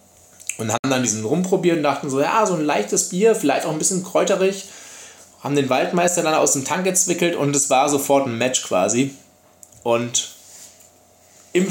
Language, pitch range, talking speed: German, 120-155 Hz, 180 wpm